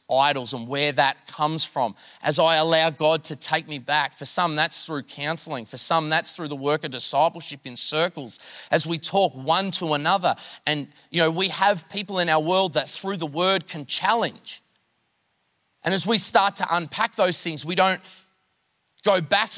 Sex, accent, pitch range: male, Australian, 120-185 Hz